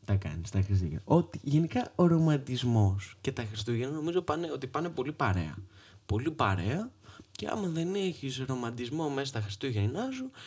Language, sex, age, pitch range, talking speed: Greek, male, 20-39, 100-135 Hz, 150 wpm